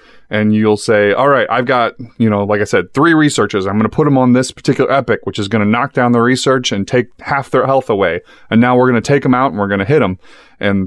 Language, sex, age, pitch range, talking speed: English, male, 30-49, 105-135 Hz, 285 wpm